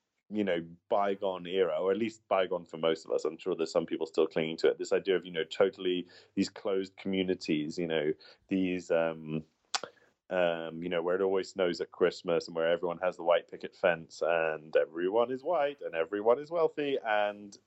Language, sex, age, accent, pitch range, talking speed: English, male, 30-49, British, 95-135 Hz, 205 wpm